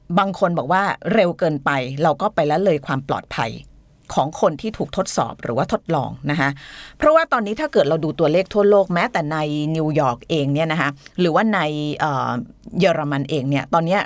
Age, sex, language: 30-49, female, Thai